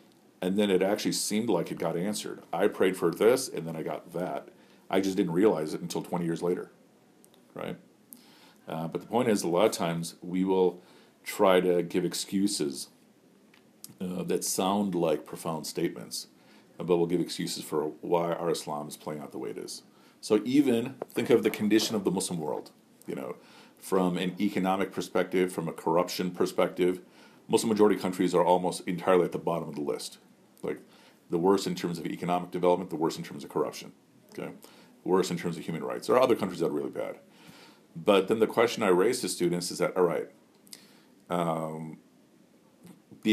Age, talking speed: 50-69, 190 wpm